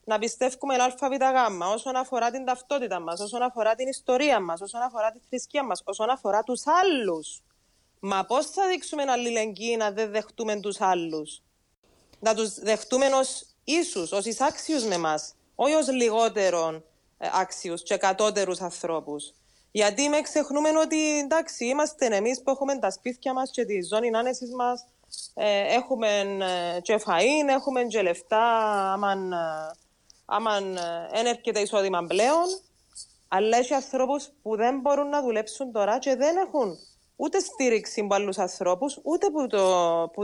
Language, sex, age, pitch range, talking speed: Greek, female, 20-39, 195-275 Hz, 150 wpm